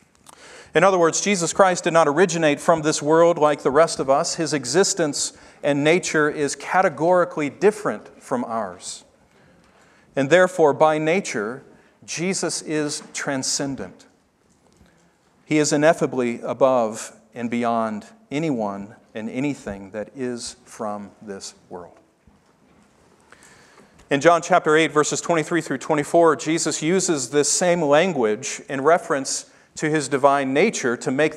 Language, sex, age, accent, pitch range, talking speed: English, male, 40-59, American, 140-175 Hz, 130 wpm